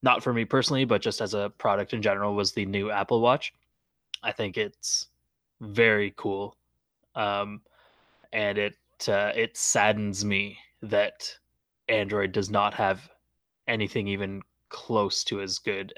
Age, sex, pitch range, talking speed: 20-39, male, 100-120 Hz, 145 wpm